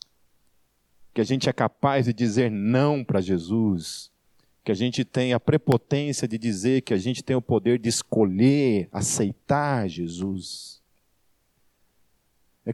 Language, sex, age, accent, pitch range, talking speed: Portuguese, male, 40-59, Brazilian, 95-145 Hz, 135 wpm